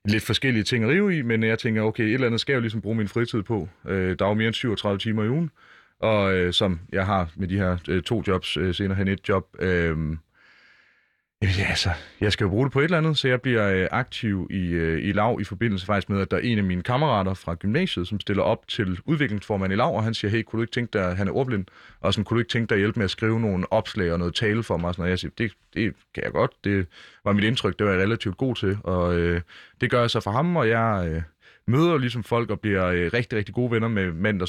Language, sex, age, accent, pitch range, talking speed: Danish, male, 30-49, native, 95-115 Hz, 285 wpm